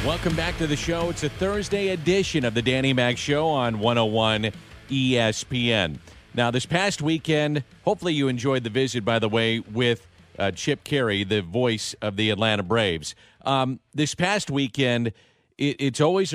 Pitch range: 110-135 Hz